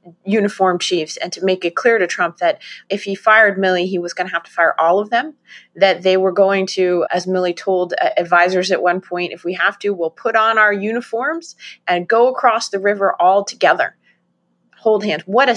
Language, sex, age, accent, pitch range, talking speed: English, female, 30-49, American, 175-220 Hz, 220 wpm